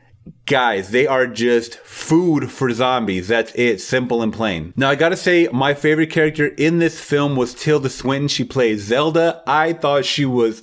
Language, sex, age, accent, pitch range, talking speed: English, male, 30-49, American, 125-160 Hz, 180 wpm